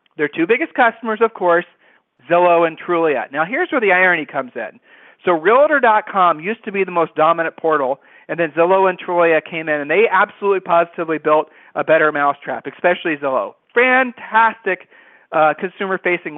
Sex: male